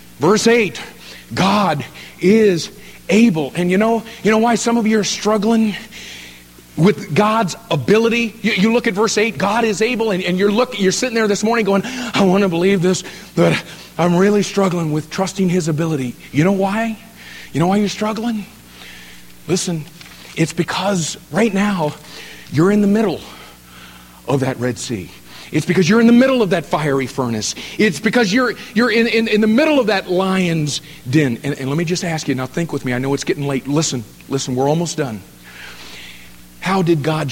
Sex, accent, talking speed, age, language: male, American, 190 wpm, 50-69, English